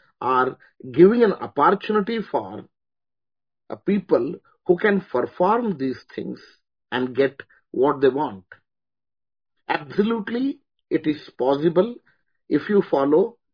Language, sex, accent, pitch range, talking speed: English, male, Indian, 130-180 Hz, 105 wpm